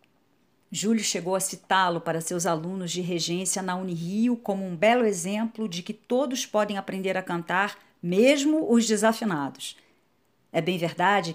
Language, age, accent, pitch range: German, 40-59, Brazilian, 180-225 Hz